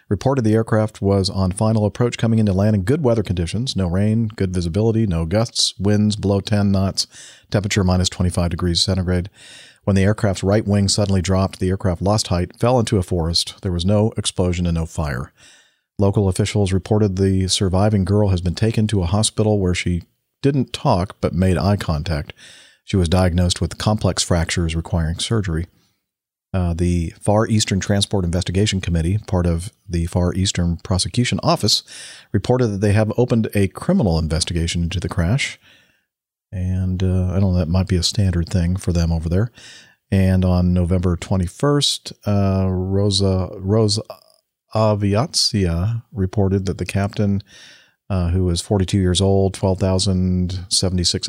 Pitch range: 90-105 Hz